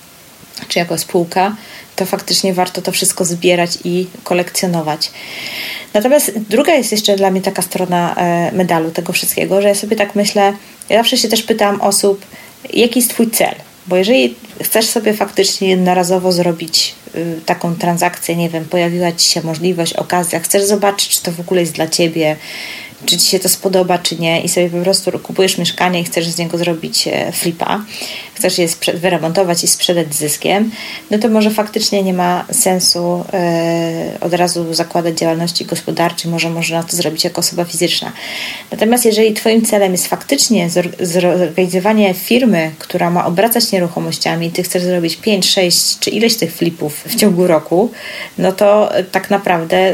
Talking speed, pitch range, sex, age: 165 wpm, 170-200 Hz, female, 30-49